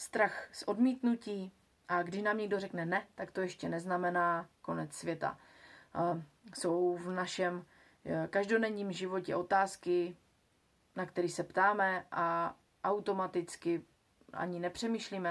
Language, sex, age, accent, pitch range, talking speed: Czech, female, 30-49, native, 170-200 Hz, 115 wpm